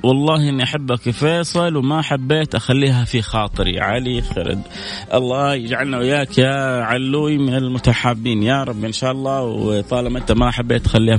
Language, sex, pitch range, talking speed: Arabic, male, 105-135 Hz, 155 wpm